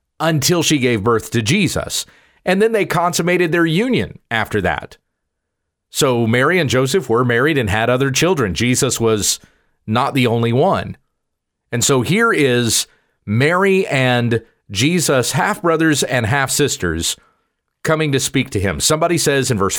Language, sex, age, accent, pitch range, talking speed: English, male, 40-59, American, 115-165 Hz, 150 wpm